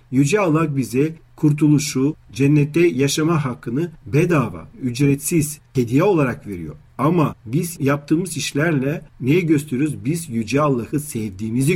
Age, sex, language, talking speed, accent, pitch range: 50-69, male, Turkish, 110 wpm, native, 125-160 Hz